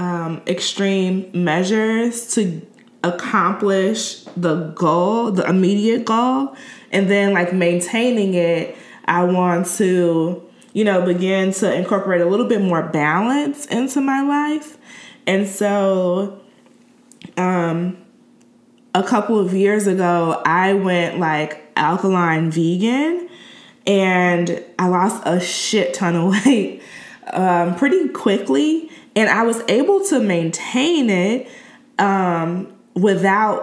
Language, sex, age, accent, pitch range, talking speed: English, female, 20-39, American, 175-230 Hz, 115 wpm